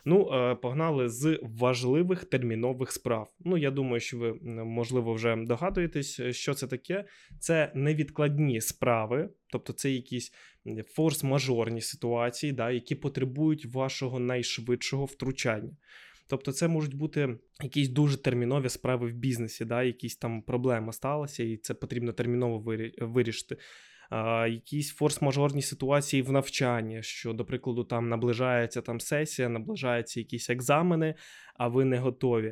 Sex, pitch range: male, 120-145 Hz